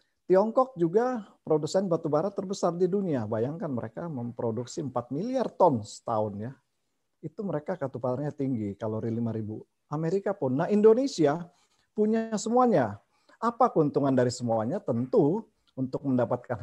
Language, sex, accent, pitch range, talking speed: Indonesian, male, native, 115-160 Hz, 125 wpm